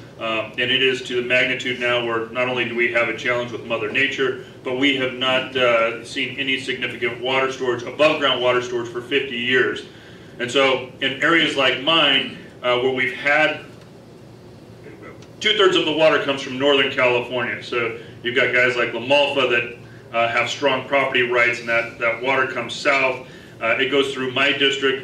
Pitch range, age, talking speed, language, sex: 120-135 Hz, 40-59, 185 wpm, English, male